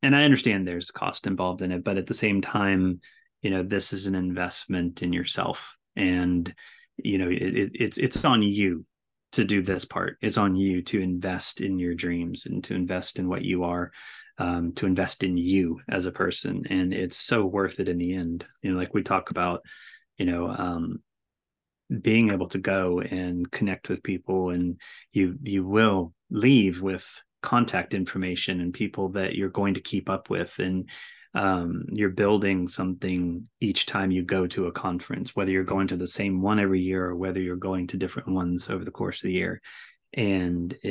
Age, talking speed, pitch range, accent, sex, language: 30-49, 195 wpm, 90-100 Hz, American, male, English